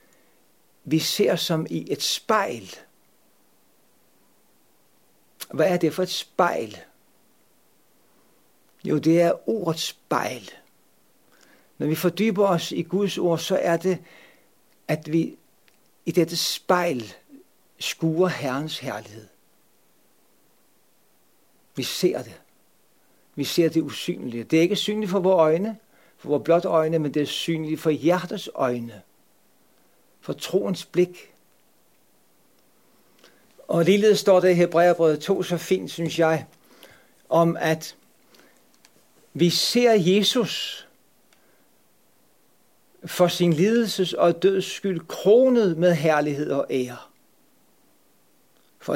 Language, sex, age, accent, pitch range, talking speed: Danish, male, 60-79, native, 150-185 Hz, 110 wpm